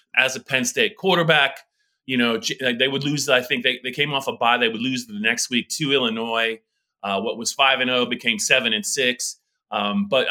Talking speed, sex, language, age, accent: 210 wpm, male, English, 30-49, American